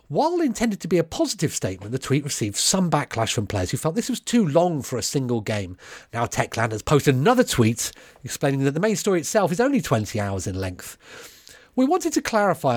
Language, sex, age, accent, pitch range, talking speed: English, male, 40-59, British, 120-195 Hz, 215 wpm